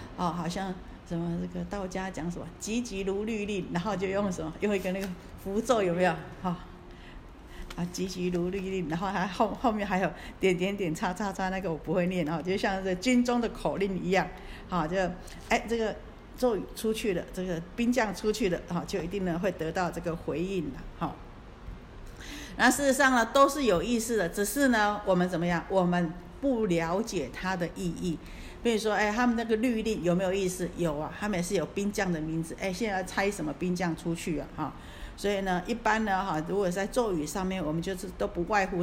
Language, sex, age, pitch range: Chinese, female, 50-69, 175-210 Hz